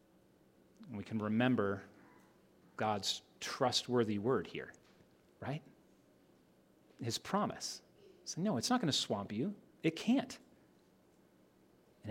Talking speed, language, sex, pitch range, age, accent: 110 wpm, English, male, 130-195 Hz, 30-49, American